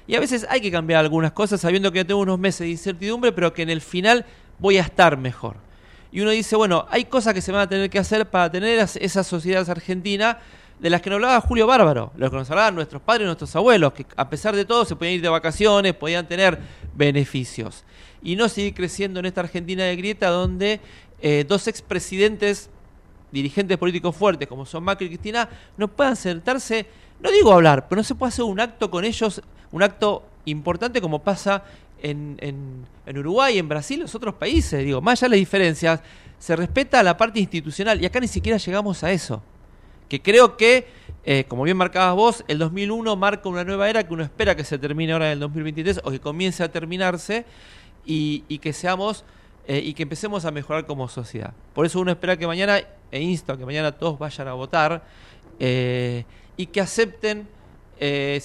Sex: male